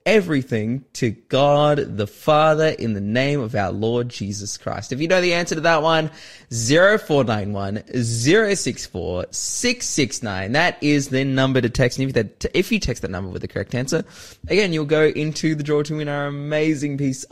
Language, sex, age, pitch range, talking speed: English, male, 20-39, 110-155 Hz, 175 wpm